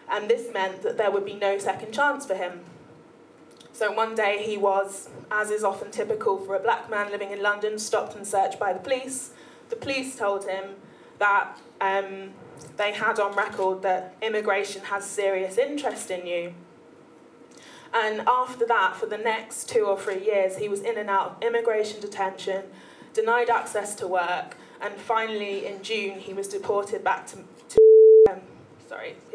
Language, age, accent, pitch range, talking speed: English, 20-39, British, 195-230 Hz, 170 wpm